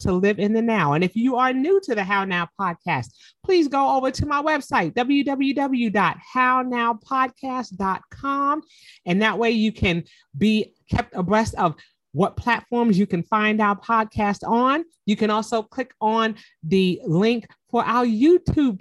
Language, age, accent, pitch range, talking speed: English, 40-59, American, 205-275 Hz, 155 wpm